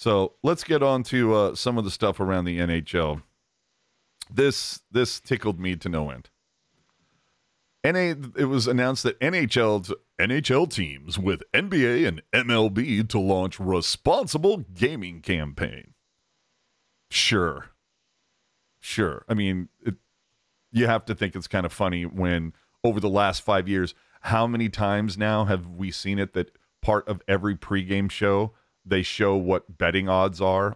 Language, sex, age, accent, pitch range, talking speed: English, male, 40-59, American, 95-115 Hz, 150 wpm